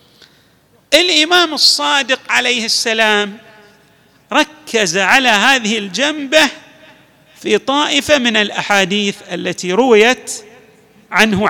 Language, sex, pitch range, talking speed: Arabic, male, 190-265 Hz, 80 wpm